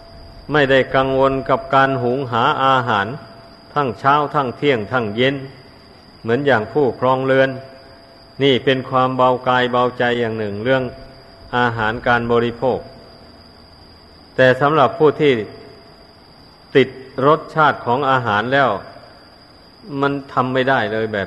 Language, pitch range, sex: Thai, 110-135 Hz, male